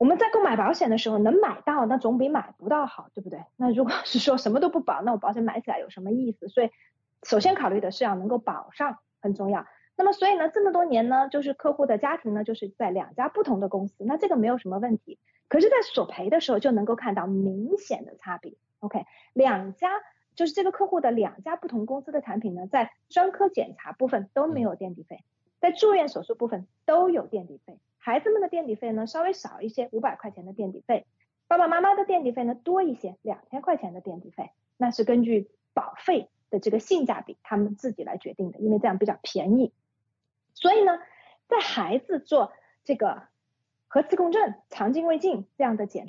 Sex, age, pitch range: female, 30-49, 210-335 Hz